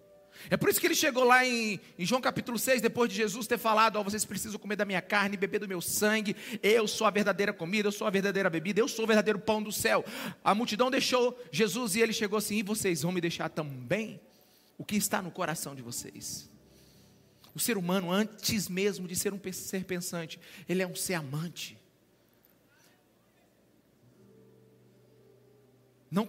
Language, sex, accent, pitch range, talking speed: Portuguese, male, Brazilian, 140-230 Hz, 185 wpm